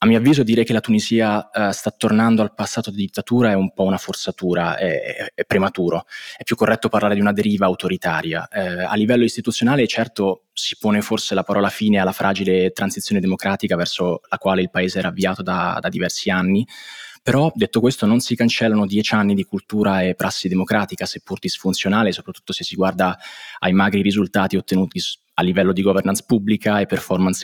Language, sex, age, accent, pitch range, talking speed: Italian, male, 20-39, native, 95-115 Hz, 190 wpm